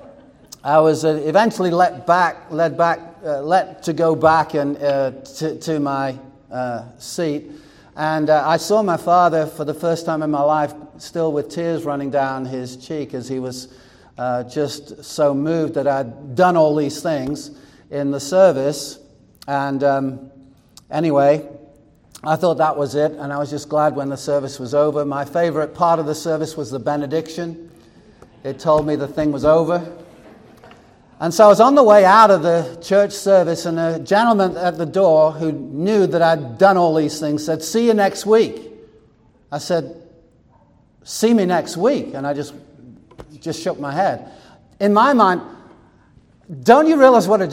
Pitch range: 145-175 Hz